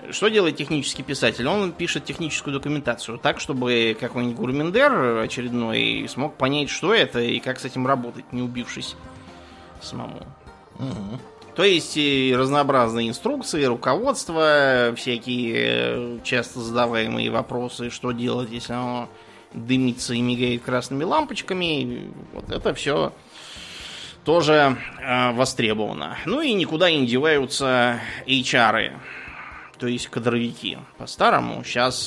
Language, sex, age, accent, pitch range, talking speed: Russian, male, 20-39, native, 120-135 Hz, 110 wpm